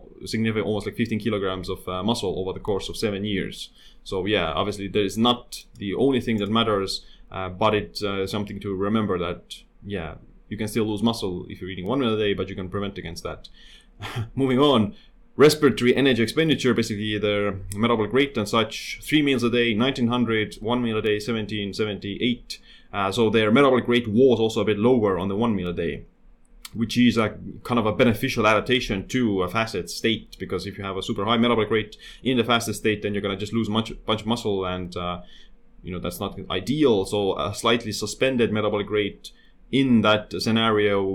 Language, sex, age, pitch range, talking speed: English, male, 30-49, 100-120 Hz, 205 wpm